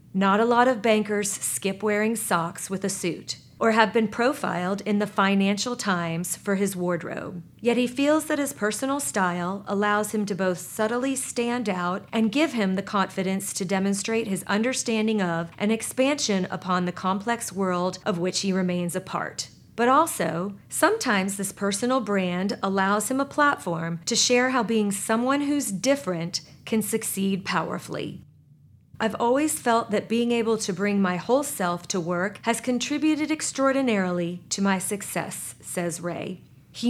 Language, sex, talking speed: English, female, 165 wpm